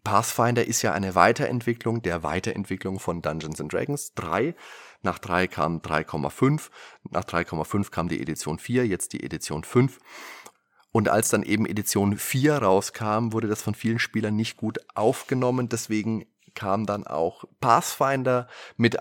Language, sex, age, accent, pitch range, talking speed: German, male, 30-49, German, 95-115 Hz, 145 wpm